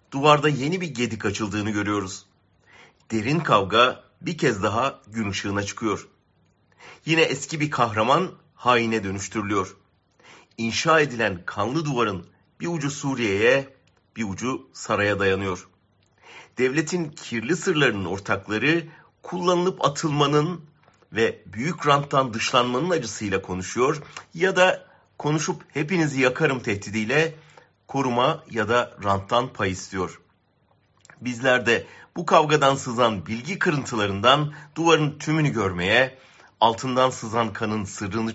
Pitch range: 110-155 Hz